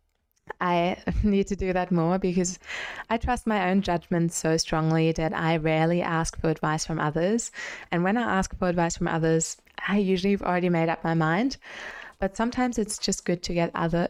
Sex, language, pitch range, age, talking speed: female, English, 170-200 Hz, 20-39, 195 wpm